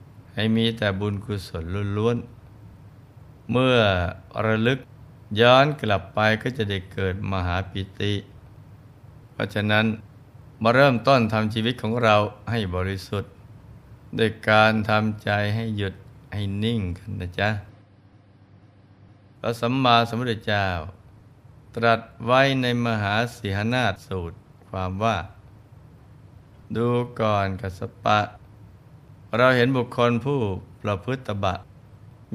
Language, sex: Thai, male